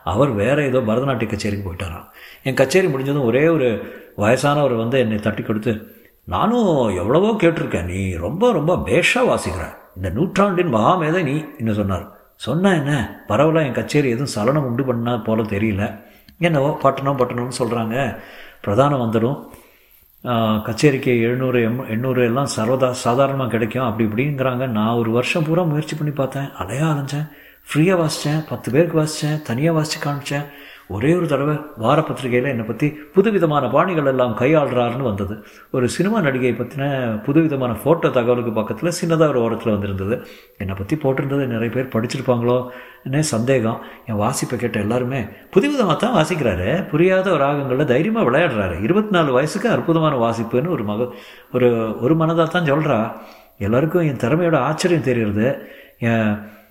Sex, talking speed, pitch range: male, 140 wpm, 115-155 Hz